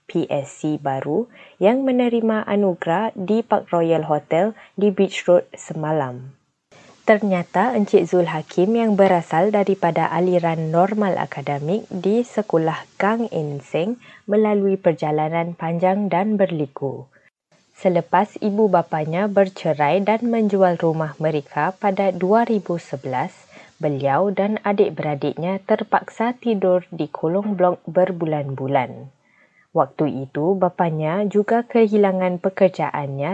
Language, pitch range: Malay, 155-200 Hz